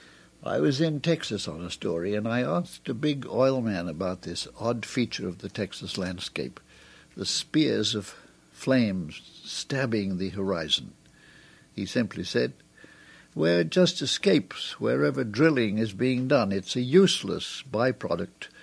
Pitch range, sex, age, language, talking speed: 90-130 Hz, male, 60-79, English, 145 wpm